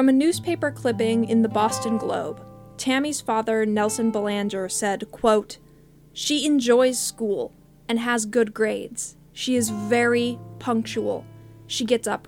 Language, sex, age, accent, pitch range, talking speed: English, female, 10-29, American, 195-255 Hz, 135 wpm